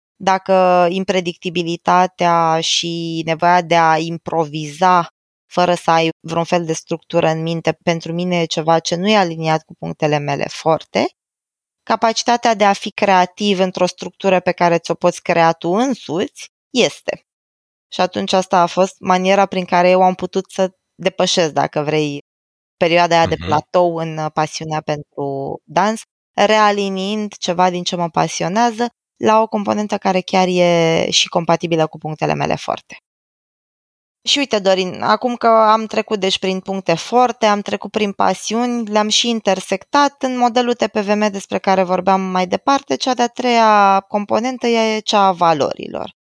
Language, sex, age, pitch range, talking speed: Romanian, female, 20-39, 165-215 Hz, 155 wpm